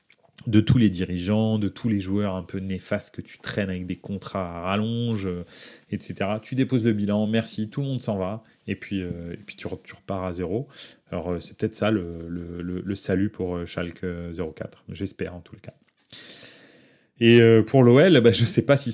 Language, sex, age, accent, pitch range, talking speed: French, male, 30-49, French, 95-115 Hz, 215 wpm